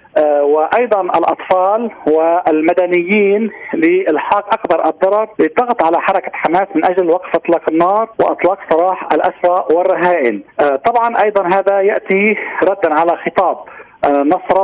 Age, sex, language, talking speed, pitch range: 40-59, male, Arabic, 110 wpm, 165-205 Hz